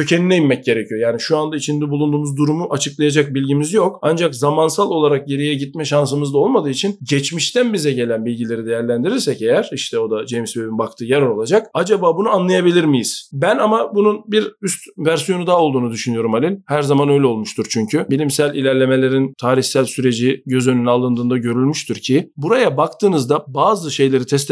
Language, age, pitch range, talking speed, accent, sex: Turkish, 50-69, 125-160 Hz, 165 wpm, native, male